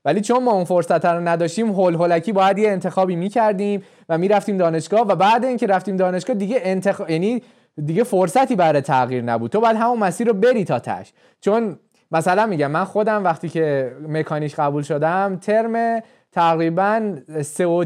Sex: male